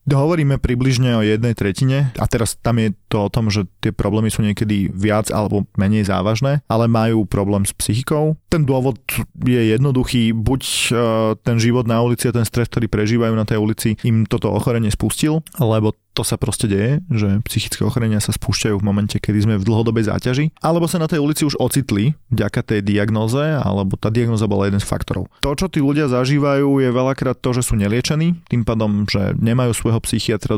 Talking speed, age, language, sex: 190 wpm, 30-49, Slovak, male